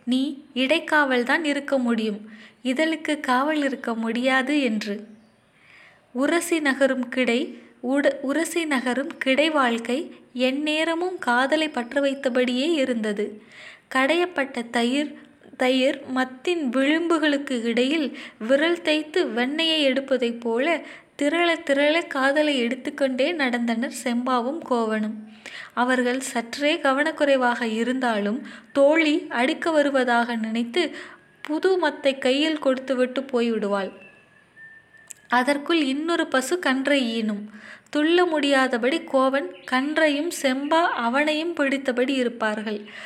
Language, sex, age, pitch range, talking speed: Tamil, female, 20-39, 245-300 Hz, 85 wpm